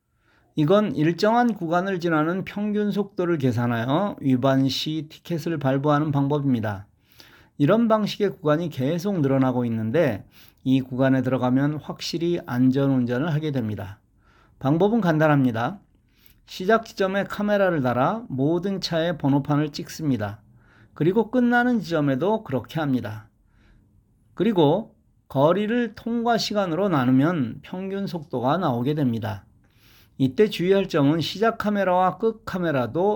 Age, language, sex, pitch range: 40-59, Korean, male, 125-190 Hz